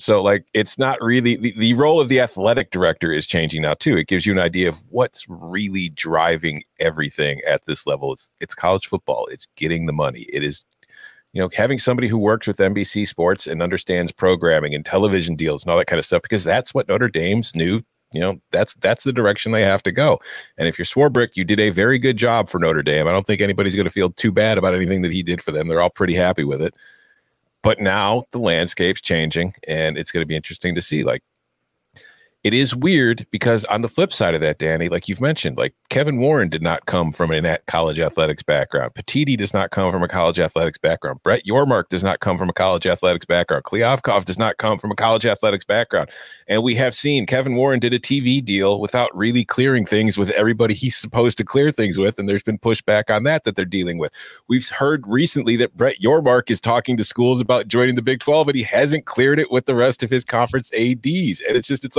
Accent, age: American, 40-59